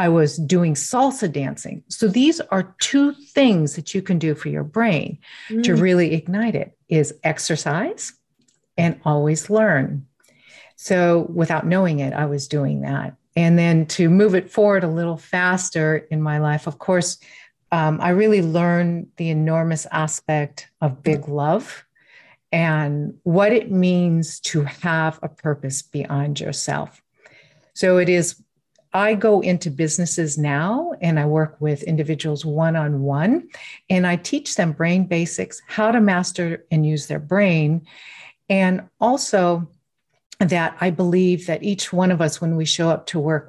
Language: English